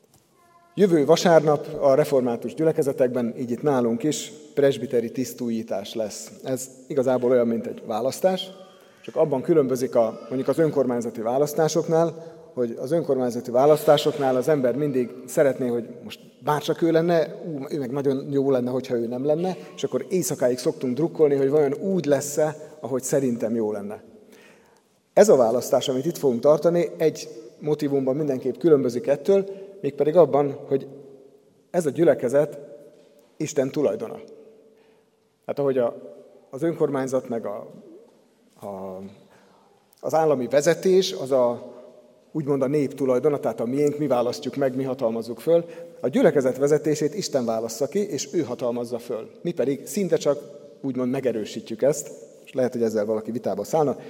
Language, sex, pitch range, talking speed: Hungarian, male, 125-160 Hz, 140 wpm